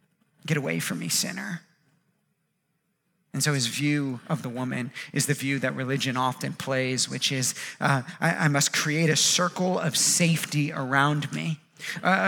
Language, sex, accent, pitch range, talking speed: English, male, American, 140-175 Hz, 160 wpm